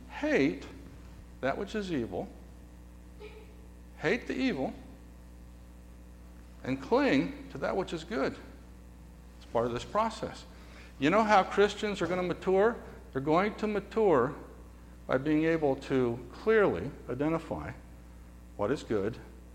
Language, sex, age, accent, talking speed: English, male, 60-79, American, 125 wpm